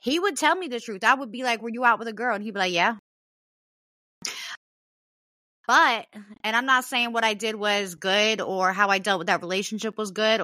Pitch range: 215-270 Hz